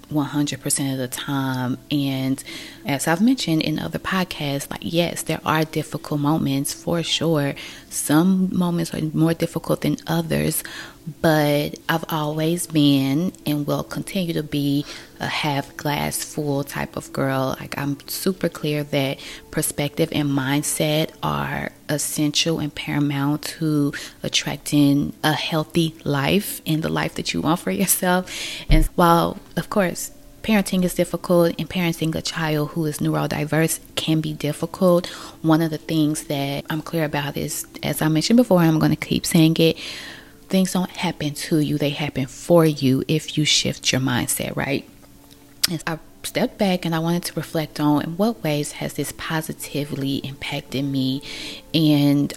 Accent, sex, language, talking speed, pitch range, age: American, female, English, 160 wpm, 145-165 Hz, 20-39